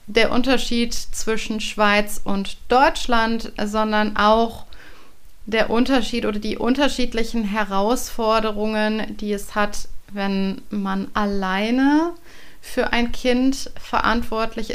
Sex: female